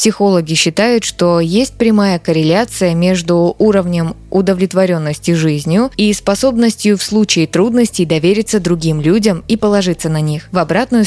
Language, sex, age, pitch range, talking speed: Russian, female, 20-39, 165-210 Hz, 130 wpm